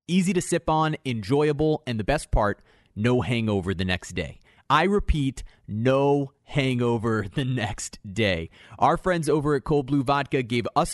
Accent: American